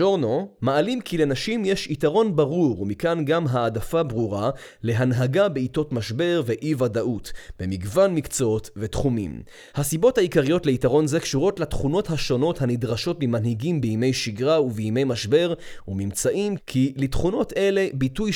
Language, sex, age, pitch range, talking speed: Hebrew, male, 20-39, 120-170 Hz, 120 wpm